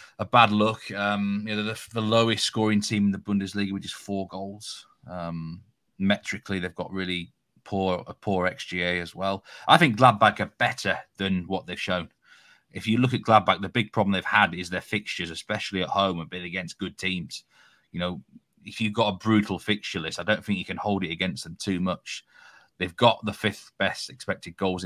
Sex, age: male, 30-49